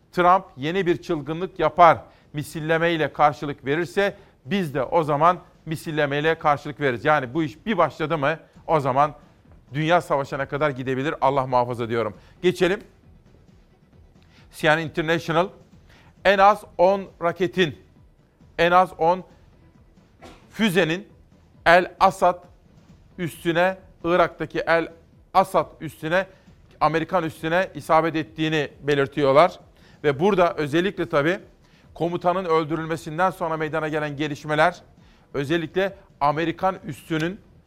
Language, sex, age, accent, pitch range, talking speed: Turkish, male, 40-59, native, 145-175 Hz, 105 wpm